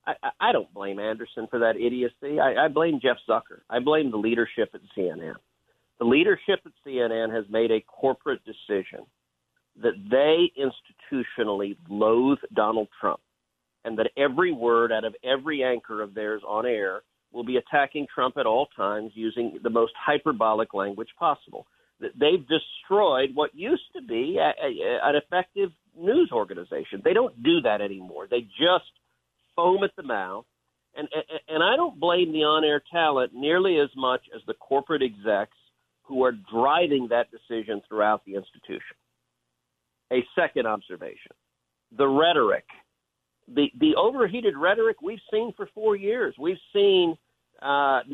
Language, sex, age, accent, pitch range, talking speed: English, male, 50-69, American, 110-175 Hz, 150 wpm